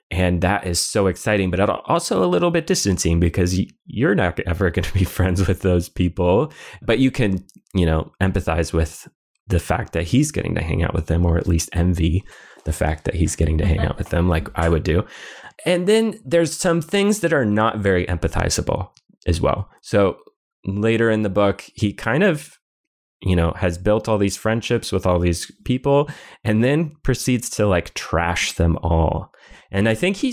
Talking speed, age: 200 wpm, 20-39